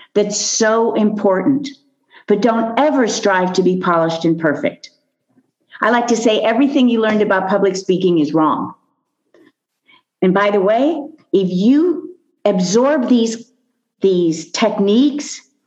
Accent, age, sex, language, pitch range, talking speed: American, 50-69, female, English, 190-245 Hz, 130 wpm